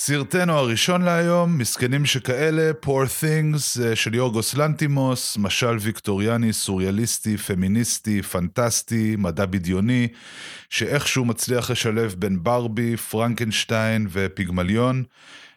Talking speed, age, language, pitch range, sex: 95 wpm, 30-49, Hebrew, 95-125 Hz, male